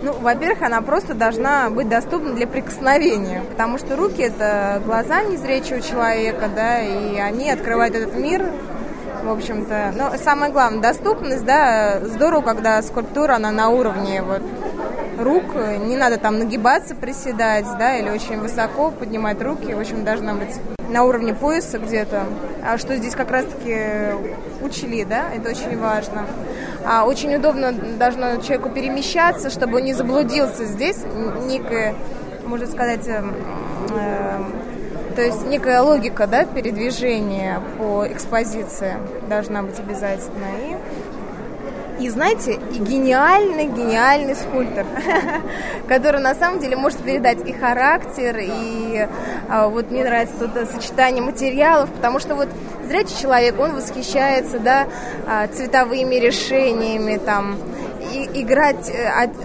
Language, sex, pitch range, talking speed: Russian, female, 220-270 Hz, 130 wpm